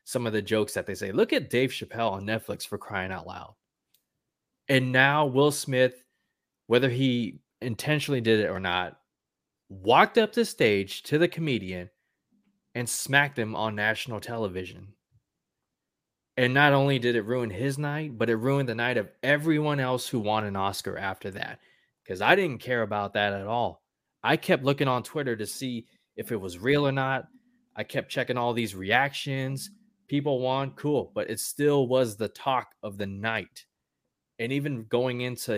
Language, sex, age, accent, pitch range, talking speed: English, male, 20-39, American, 100-140 Hz, 180 wpm